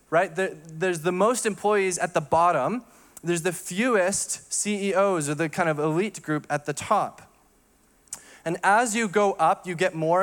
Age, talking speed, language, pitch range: 20-39, 170 wpm, English, 160-195 Hz